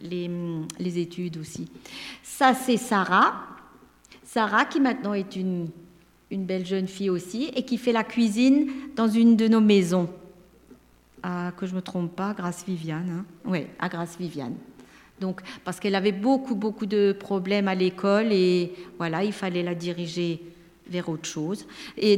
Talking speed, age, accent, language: 165 wpm, 50-69, French, French